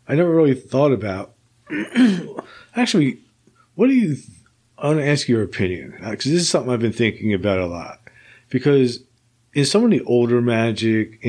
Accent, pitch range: American, 105-125 Hz